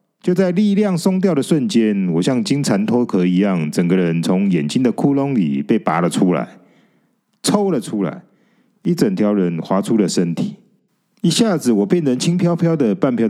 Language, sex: Chinese, male